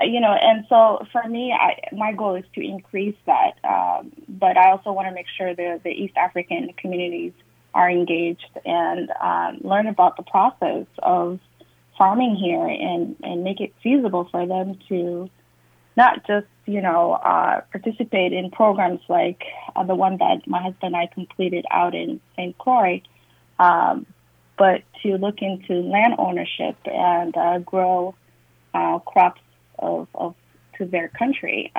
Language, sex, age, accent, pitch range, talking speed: English, female, 20-39, American, 175-210 Hz, 160 wpm